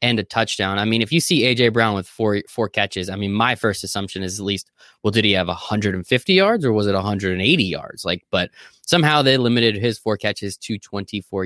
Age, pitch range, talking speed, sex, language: 20-39, 100-130 Hz, 225 wpm, male, English